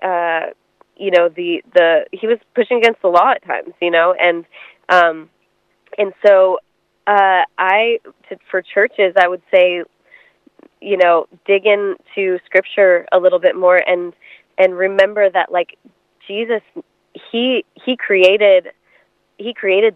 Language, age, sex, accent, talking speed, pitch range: English, 20-39, female, American, 135 wpm, 175-200 Hz